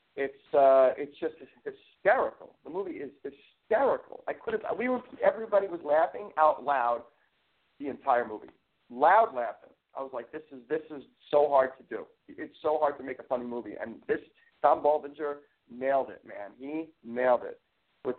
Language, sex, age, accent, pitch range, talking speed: English, male, 50-69, American, 125-155 Hz, 180 wpm